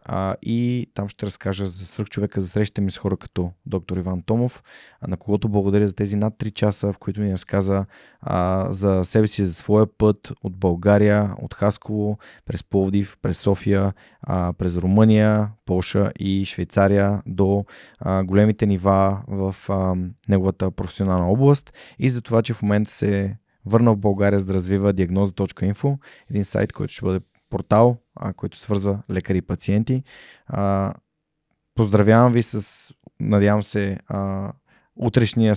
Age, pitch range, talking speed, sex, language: 20-39, 95-110 Hz, 150 wpm, male, Bulgarian